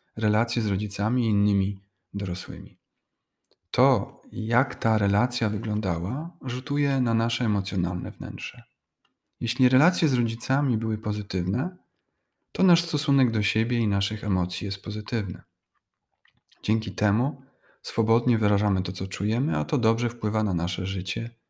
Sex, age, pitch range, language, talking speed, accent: male, 30-49, 95-120 Hz, Polish, 130 wpm, native